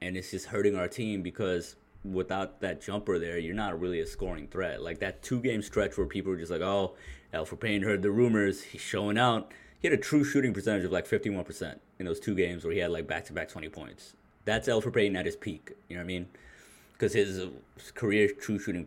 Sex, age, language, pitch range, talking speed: male, 20-39, English, 90-110 Hz, 225 wpm